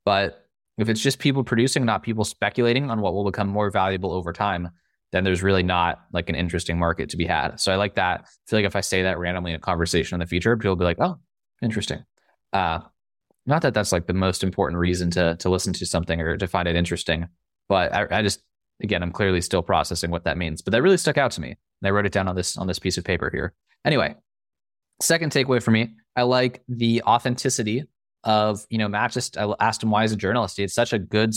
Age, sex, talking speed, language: 20-39, male, 245 wpm, English